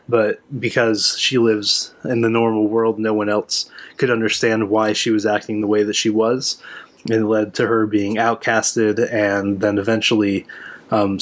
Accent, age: American, 20-39